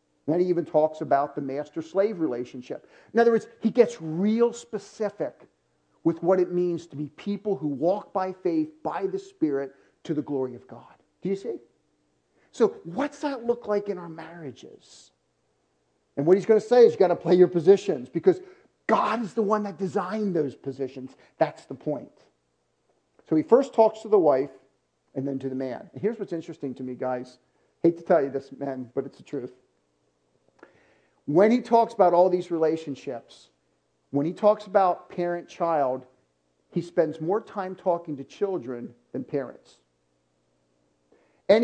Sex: male